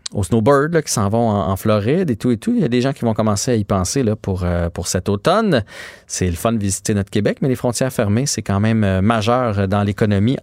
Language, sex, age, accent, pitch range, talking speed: French, male, 30-49, Canadian, 100-130 Hz, 270 wpm